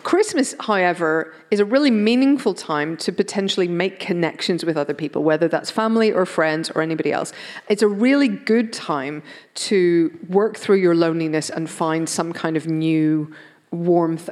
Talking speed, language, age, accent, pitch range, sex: 165 wpm, English, 40-59, British, 160-205 Hz, female